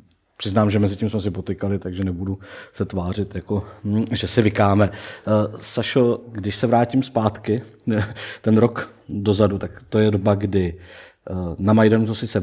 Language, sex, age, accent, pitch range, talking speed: Czech, male, 50-69, native, 95-105 Hz, 155 wpm